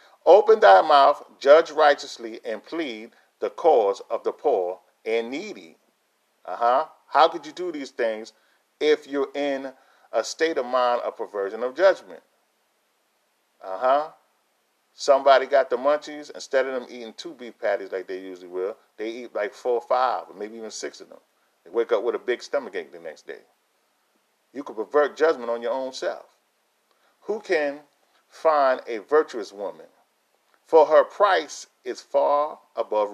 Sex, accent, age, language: male, American, 40-59, English